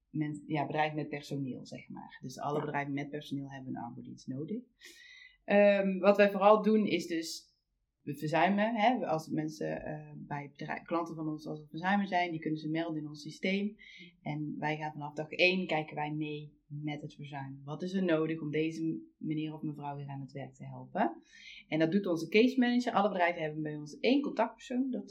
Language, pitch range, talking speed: Dutch, 145-175 Hz, 195 wpm